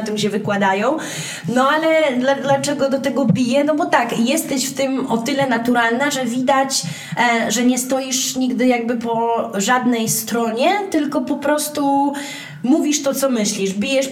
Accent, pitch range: native, 215-270 Hz